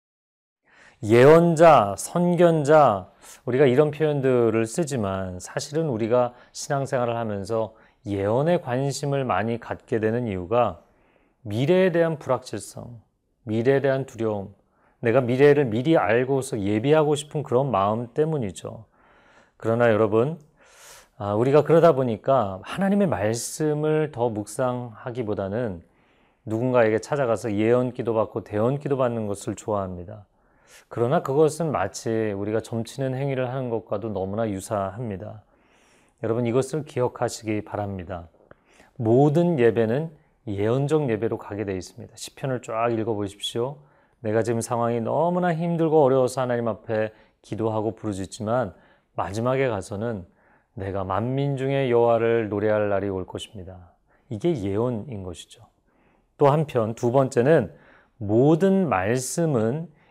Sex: male